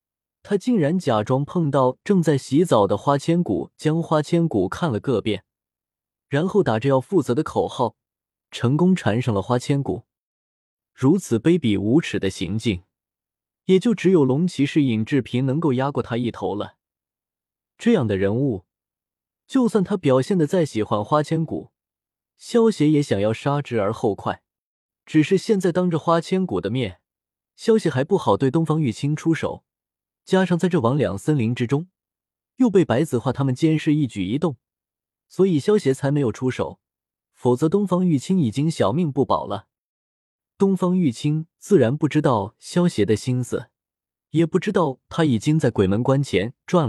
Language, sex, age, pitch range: Chinese, male, 20-39, 120-175 Hz